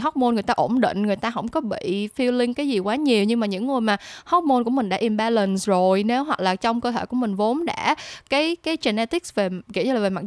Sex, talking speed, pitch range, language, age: female, 265 wpm, 200-255 Hz, Vietnamese, 10-29